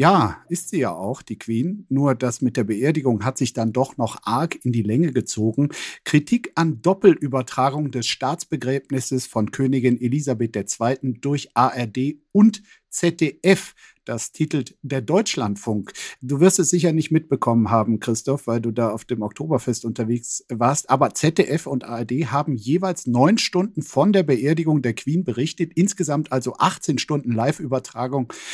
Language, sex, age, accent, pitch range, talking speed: German, male, 50-69, German, 125-155 Hz, 155 wpm